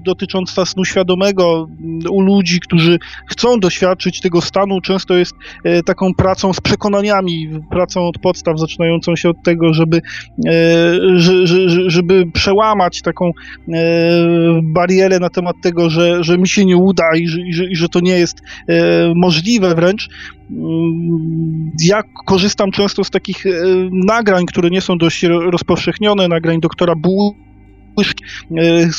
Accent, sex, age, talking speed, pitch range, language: native, male, 20-39, 125 wpm, 170-195 Hz, Polish